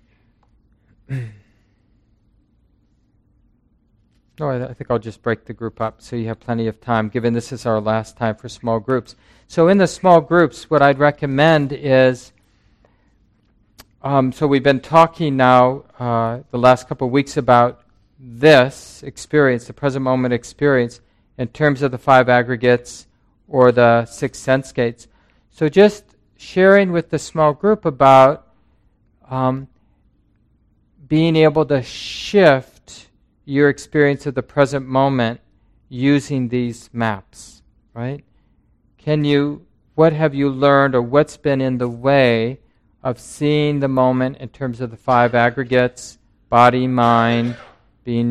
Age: 40-59